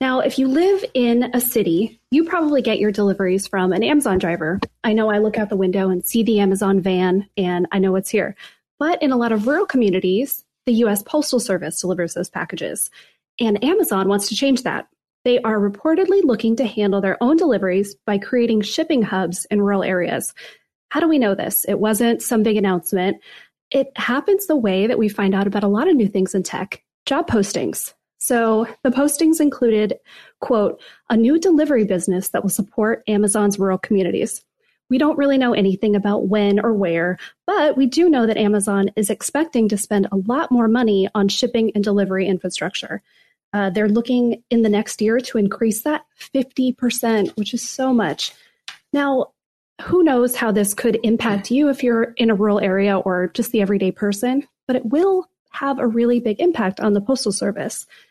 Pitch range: 200-255 Hz